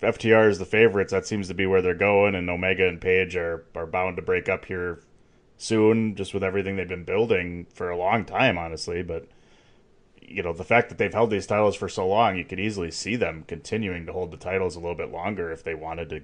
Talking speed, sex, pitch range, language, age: 240 wpm, male, 85-110 Hz, English, 30-49